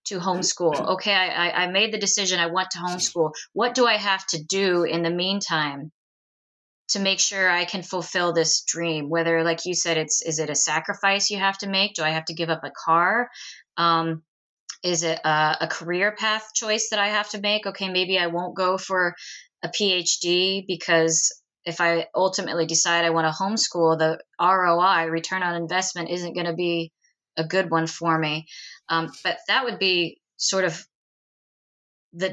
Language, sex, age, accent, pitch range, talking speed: English, female, 20-39, American, 160-185 Hz, 190 wpm